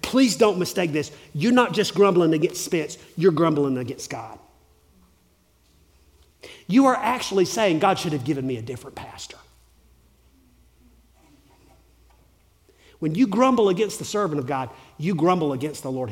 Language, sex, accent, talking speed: English, male, American, 145 wpm